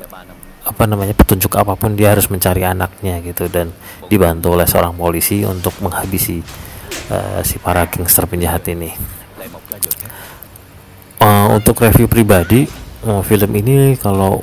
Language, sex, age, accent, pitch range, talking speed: Indonesian, male, 30-49, native, 95-105 Hz, 125 wpm